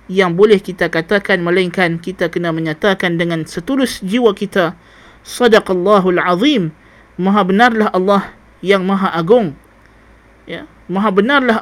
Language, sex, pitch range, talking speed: Malay, male, 170-210 Hz, 120 wpm